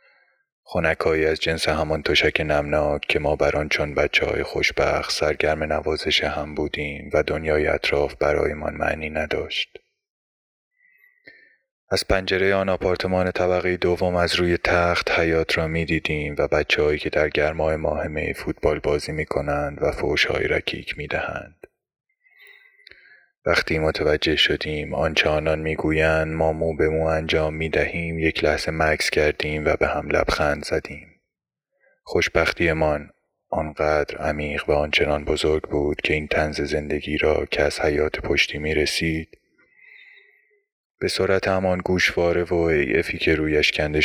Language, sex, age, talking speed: Persian, male, 20-39, 140 wpm